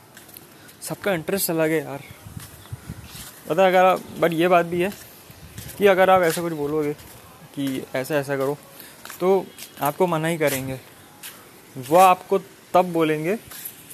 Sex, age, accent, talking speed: male, 20-39, native, 140 wpm